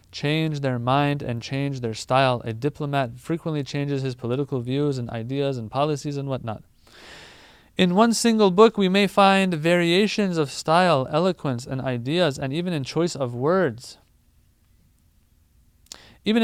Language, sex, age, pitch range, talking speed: English, male, 30-49, 130-175 Hz, 145 wpm